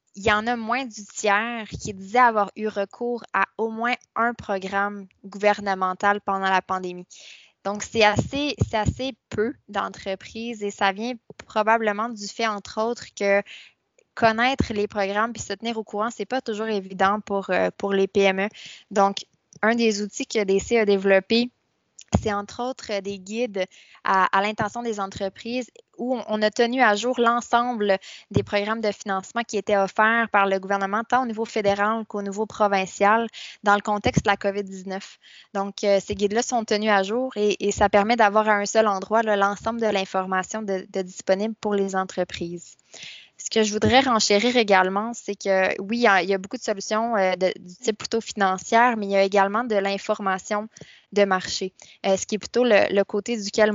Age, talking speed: 20-39, 185 wpm